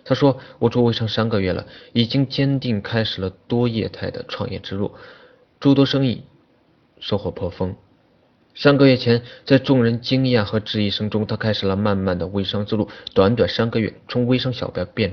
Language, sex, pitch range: Chinese, male, 100-125 Hz